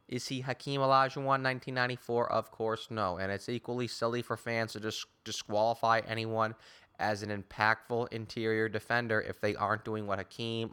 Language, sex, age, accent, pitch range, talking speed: English, male, 20-39, American, 100-120 Hz, 170 wpm